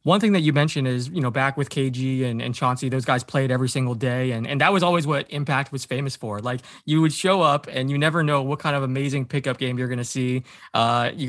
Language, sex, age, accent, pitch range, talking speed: English, male, 20-39, American, 130-160 Hz, 265 wpm